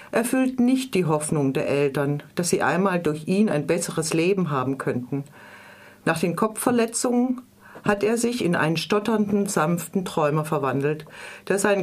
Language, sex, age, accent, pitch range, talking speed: German, female, 40-59, German, 155-210 Hz, 150 wpm